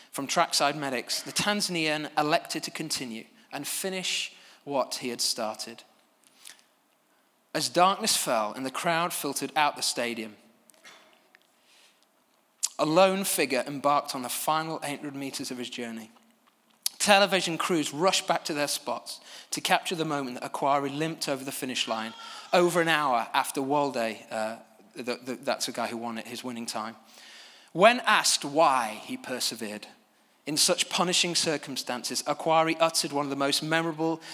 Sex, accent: male, British